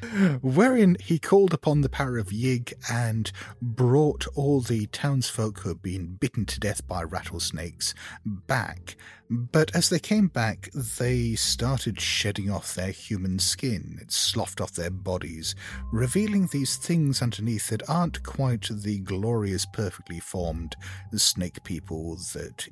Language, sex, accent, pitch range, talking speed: English, male, British, 90-125 Hz, 140 wpm